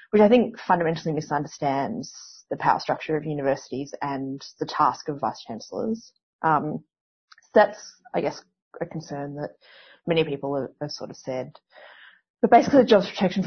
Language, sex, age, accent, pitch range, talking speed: English, female, 30-49, Australian, 150-190 Hz, 155 wpm